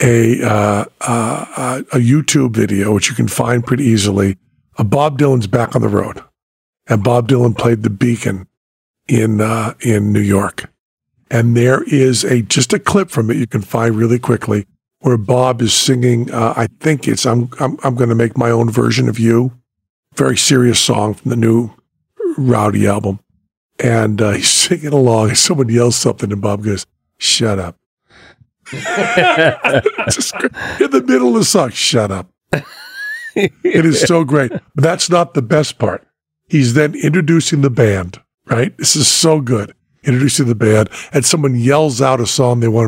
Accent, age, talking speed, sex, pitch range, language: American, 50-69, 175 wpm, male, 110-145 Hz, English